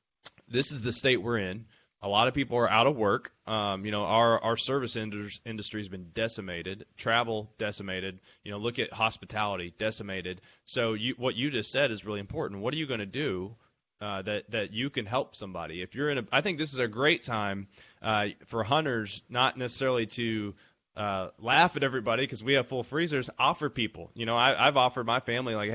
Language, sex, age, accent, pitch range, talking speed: English, male, 20-39, American, 105-125 Hz, 205 wpm